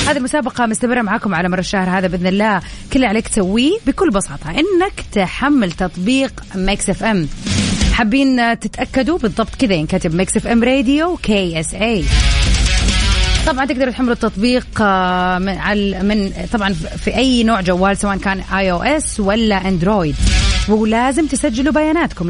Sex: female